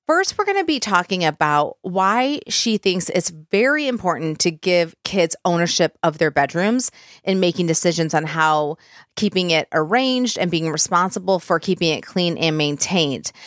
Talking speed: 165 wpm